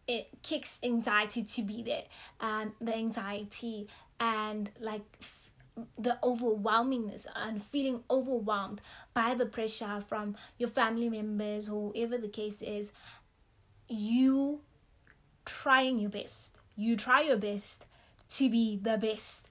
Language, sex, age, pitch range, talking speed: English, female, 20-39, 215-235 Hz, 130 wpm